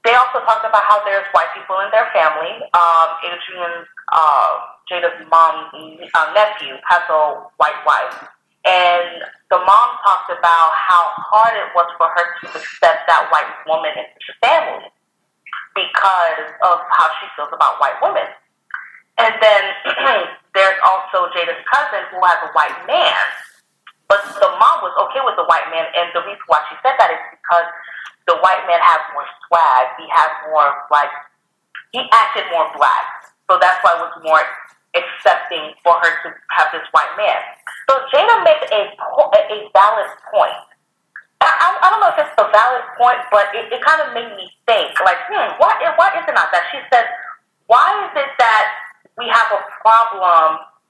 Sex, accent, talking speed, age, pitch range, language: female, American, 175 wpm, 30-49, 170-225 Hz, English